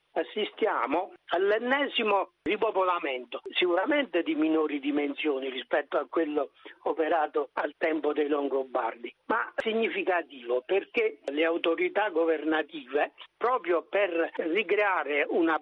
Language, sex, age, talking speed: Italian, male, 60-79, 95 wpm